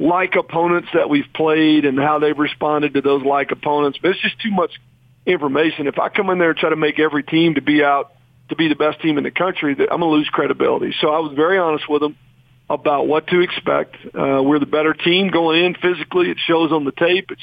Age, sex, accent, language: 50-69, male, American, English